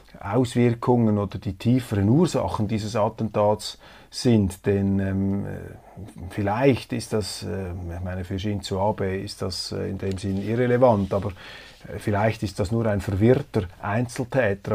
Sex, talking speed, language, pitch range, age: male, 140 wpm, German, 100-120 Hz, 30-49